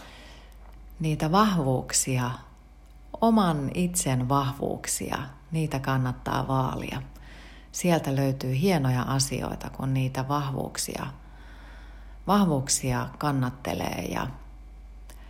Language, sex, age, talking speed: Finnish, female, 30-49, 70 wpm